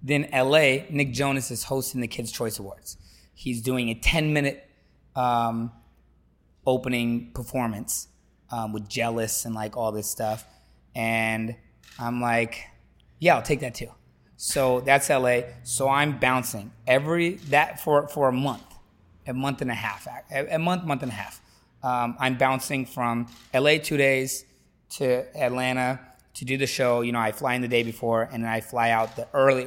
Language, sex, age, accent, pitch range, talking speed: English, male, 20-39, American, 110-130 Hz, 170 wpm